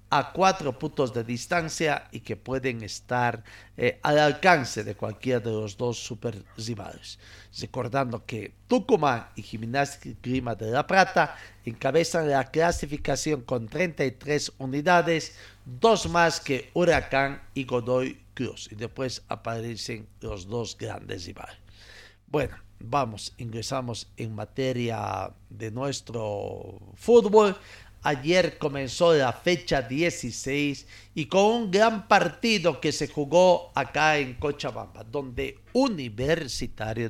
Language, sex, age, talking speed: Spanish, male, 50-69, 120 wpm